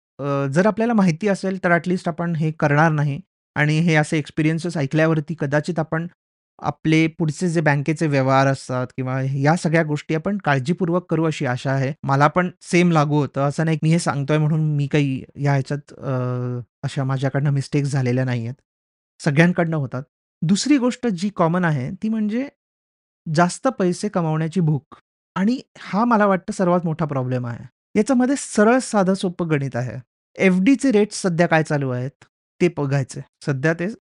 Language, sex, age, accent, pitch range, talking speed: Marathi, male, 30-49, native, 145-190 Hz, 120 wpm